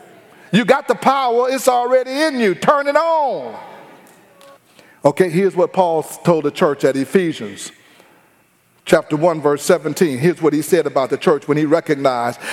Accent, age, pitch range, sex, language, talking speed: American, 40-59, 155-230 Hz, male, English, 165 wpm